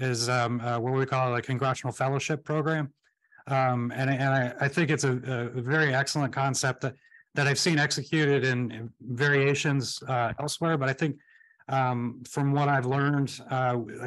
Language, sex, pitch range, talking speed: English, male, 125-145 Hz, 175 wpm